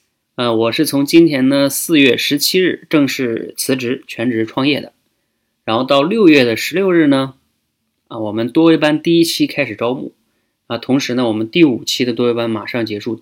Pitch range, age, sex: 110-135 Hz, 20-39, male